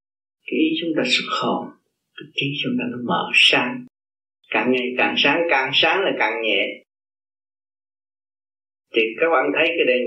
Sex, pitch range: male, 100-165 Hz